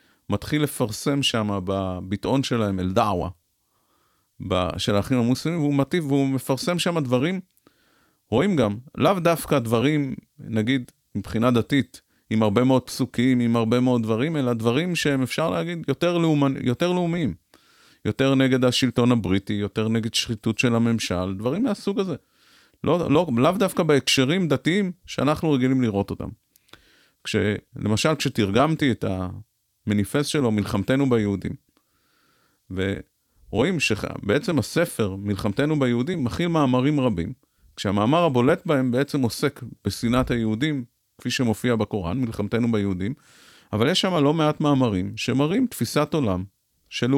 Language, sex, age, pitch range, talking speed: Hebrew, male, 30-49, 105-140 Hz, 125 wpm